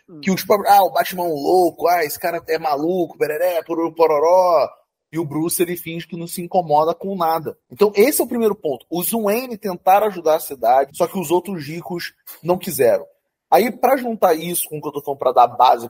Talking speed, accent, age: 215 wpm, Brazilian, 20-39